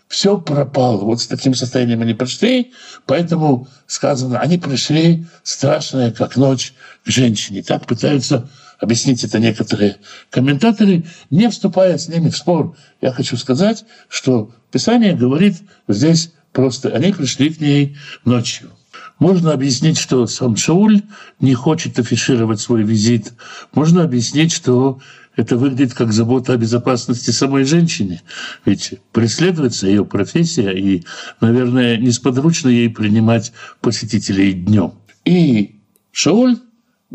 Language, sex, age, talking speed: Russian, male, 60-79, 125 wpm